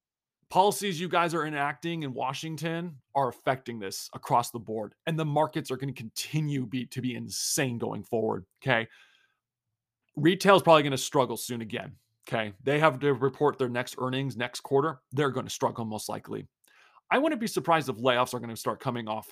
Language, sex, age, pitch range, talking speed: English, male, 30-49, 115-145 Hz, 195 wpm